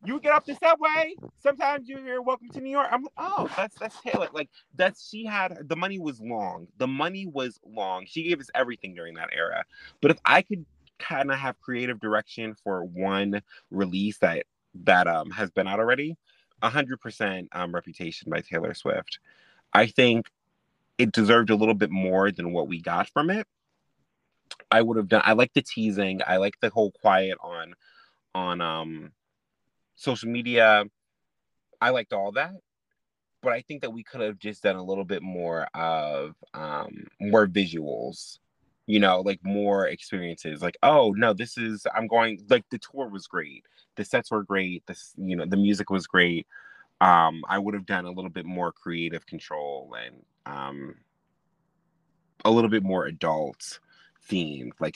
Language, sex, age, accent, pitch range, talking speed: English, male, 30-49, American, 95-135 Hz, 180 wpm